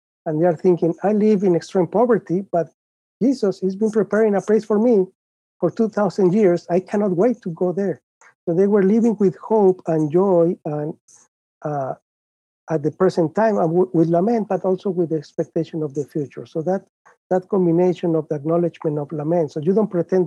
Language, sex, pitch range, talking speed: English, male, 150-180 Hz, 195 wpm